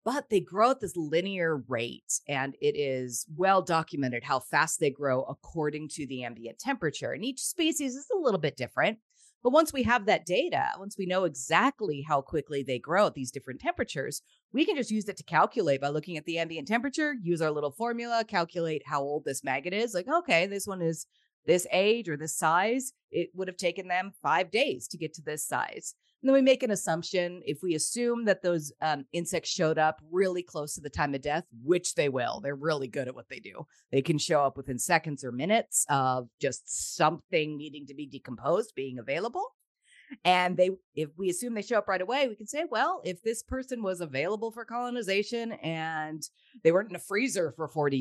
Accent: American